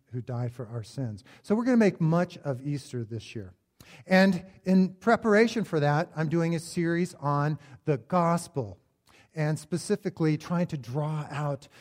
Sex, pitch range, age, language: male, 130-175 Hz, 50-69, English